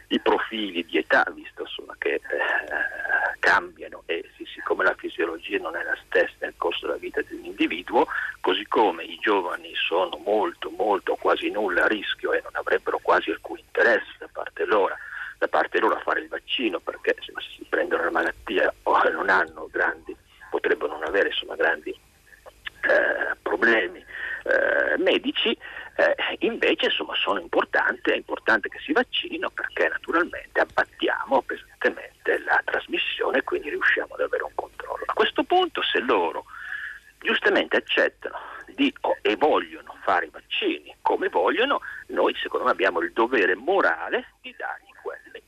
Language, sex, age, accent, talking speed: Italian, male, 50-69, native, 155 wpm